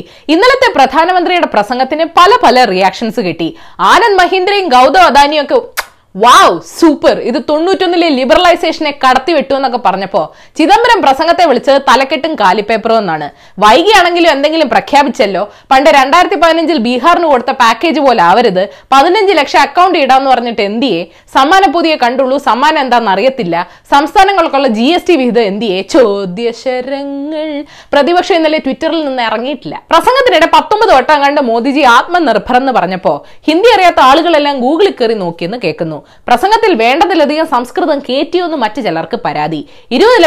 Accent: native